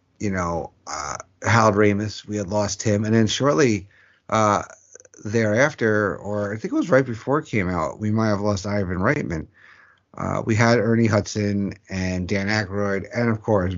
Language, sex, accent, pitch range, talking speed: English, male, American, 100-120 Hz, 180 wpm